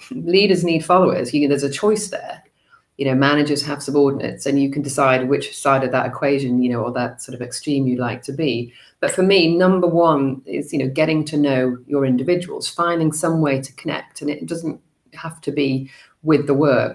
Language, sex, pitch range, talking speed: English, female, 130-160 Hz, 210 wpm